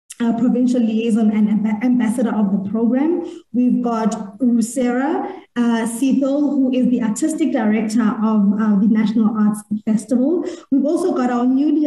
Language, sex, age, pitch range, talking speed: English, female, 20-39, 220-270 Hz, 150 wpm